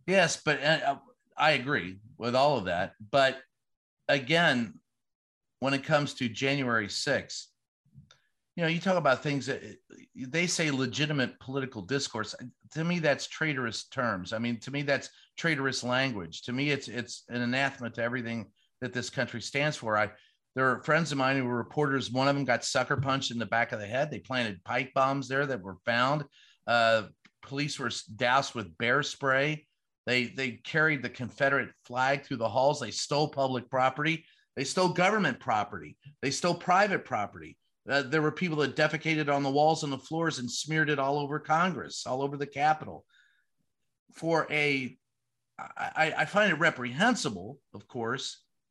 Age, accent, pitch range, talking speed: 40-59, American, 120-150 Hz, 175 wpm